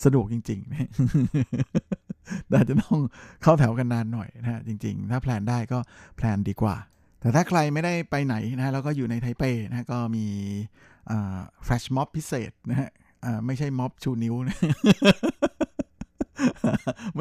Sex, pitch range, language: male, 110-130 Hz, Thai